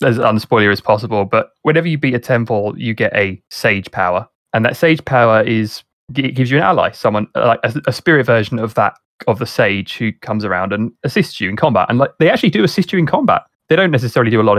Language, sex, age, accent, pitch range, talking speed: English, male, 20-39, British, 110-140 Hz, 245 wpm